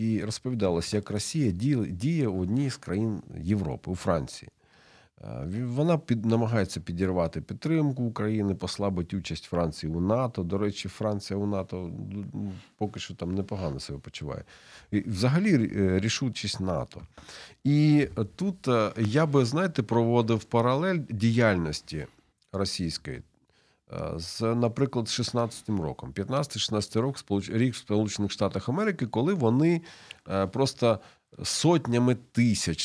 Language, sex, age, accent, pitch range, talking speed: Ukrainian, male, 40-59, native, 95-120 Hz, 115 wpm